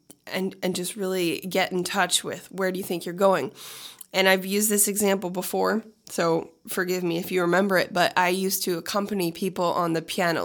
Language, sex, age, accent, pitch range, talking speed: English, female, 20-39, American, 175-215 Hz, 205 wpm